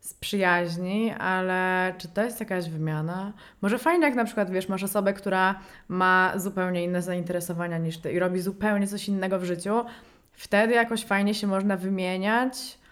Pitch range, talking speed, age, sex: 185-220 Hz, 165 wpm, 20-39, female